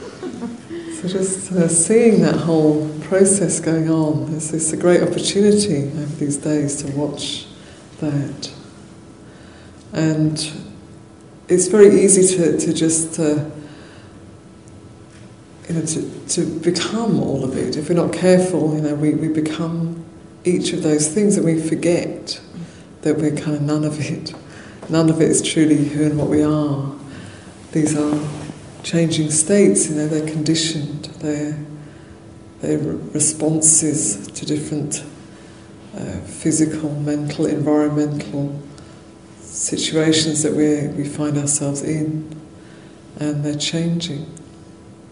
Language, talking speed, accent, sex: English, 130 wpm, British, female